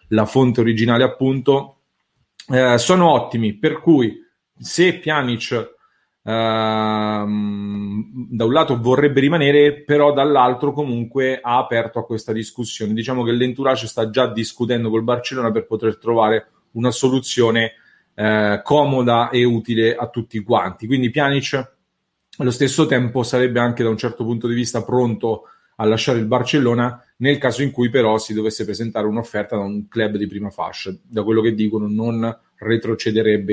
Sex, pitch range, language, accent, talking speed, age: male, 110-130 Hz, English, Italian, 150 wpm, 30-49